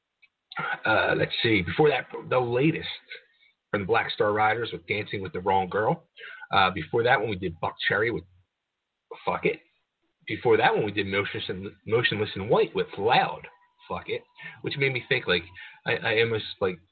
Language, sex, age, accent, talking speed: English, male, 30-49, American, 185 wpm